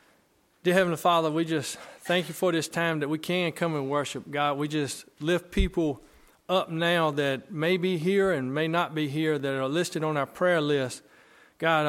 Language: English